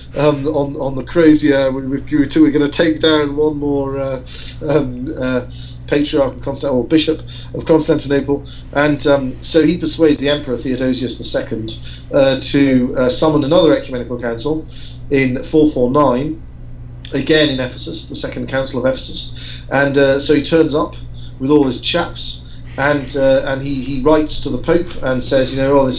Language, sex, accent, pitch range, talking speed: English, male, British, 125-150 Hz, 170 wpm